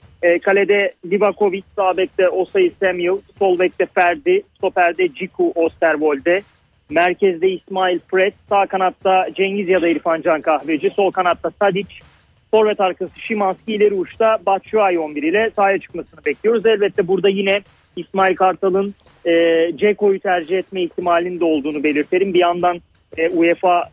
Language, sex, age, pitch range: Turkish, male, 40-59, 165-210 Hz